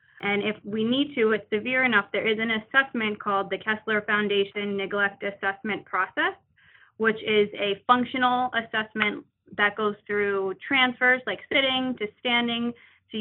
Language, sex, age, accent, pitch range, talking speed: English, female, 20-39, American, 200-220 Hz, 150 wpm